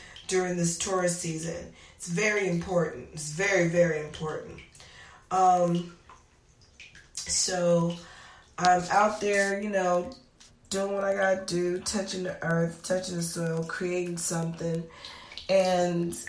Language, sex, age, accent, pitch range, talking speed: English, female, 20-39, American, 170-195 Hz, 120 wpm